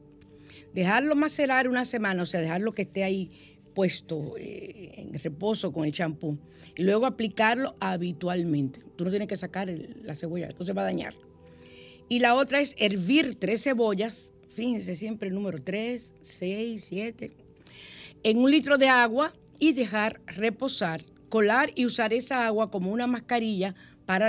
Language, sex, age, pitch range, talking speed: Spanish, female, 50-69, 160-225 Hz, 160 wpm